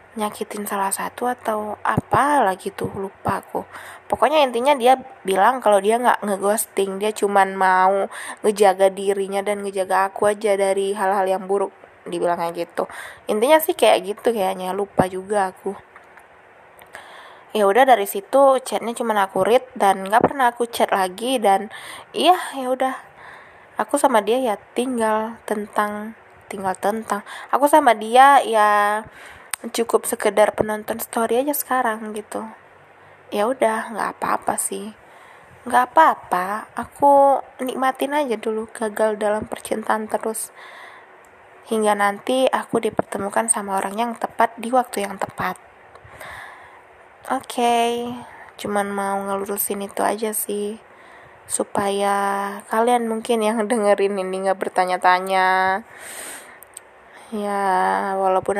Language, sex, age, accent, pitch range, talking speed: Indonesian, female, 20-39, native, 200-240 Hz, 125 wpm